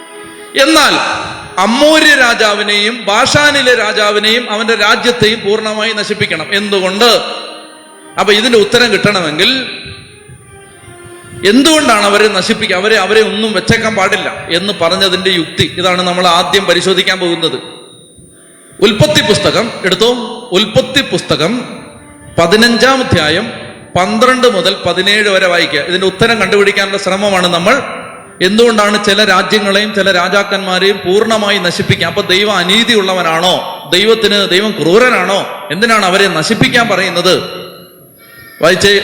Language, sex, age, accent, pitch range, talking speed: Malayalam, male, 30-49, native, 180-220 Hz, 100 wpm